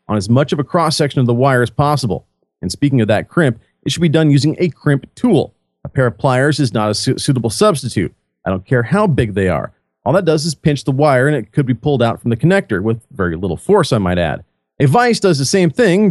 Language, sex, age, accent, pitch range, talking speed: English, male, 40-59, American, 115-175 Hz, 260 wpm